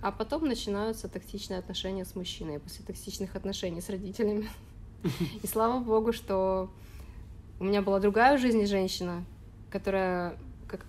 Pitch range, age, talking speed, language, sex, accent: 180-220 Hz, 20-39, 130 wpm, Ukrainian, female, native